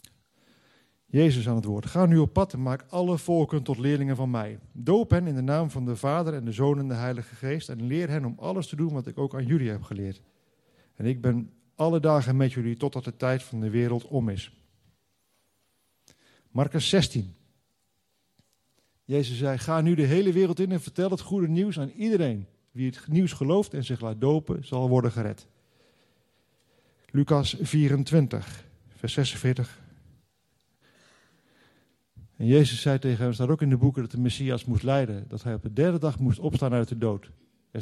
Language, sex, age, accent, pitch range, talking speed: Dutch, male, 50-69, Dutch, 120-150 Hz, 190 wpm